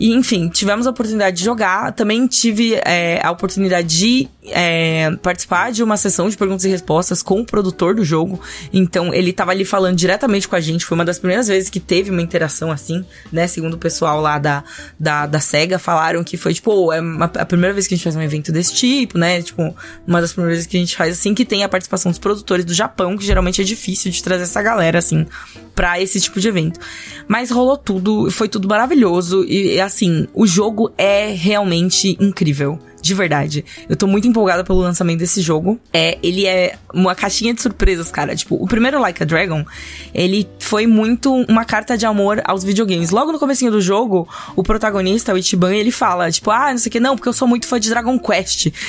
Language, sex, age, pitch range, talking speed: Portuguese, female, 20-39, 175-215 Hz, 215 wpm